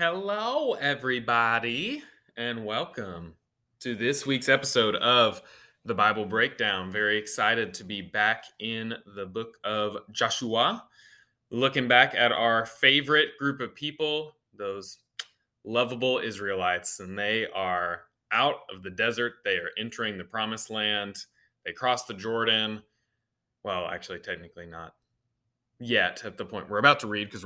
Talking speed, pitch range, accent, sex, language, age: 140 wpm, 105-125 Hz, American, male, English, 20-39